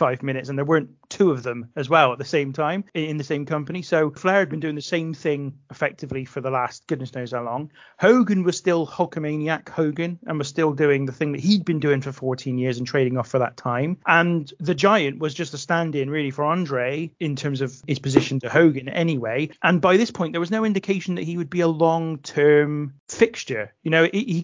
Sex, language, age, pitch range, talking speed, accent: male, English, 30-49, 140-175 Hz, 230 wpm, British